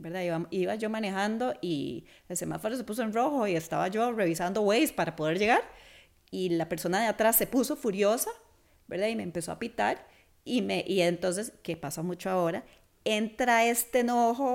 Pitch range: 175-220 Hz